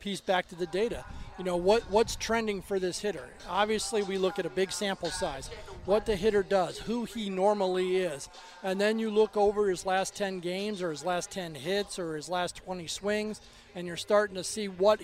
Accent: American